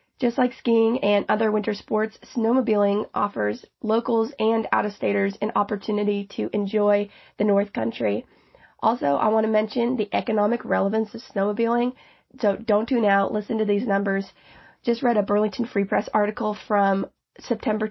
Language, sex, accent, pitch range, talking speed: English, female, American, 200-225 Hz, 160 wpm